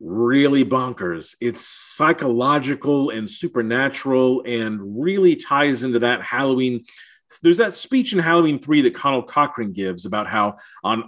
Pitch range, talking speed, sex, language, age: 115-145 Hz, 135 wpm, male, English, 40-59